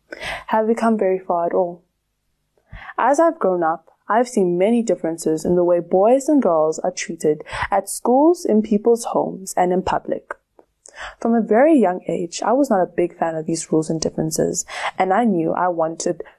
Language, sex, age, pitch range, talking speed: English, female, 20-39, 165-230 Hz, 190 wpm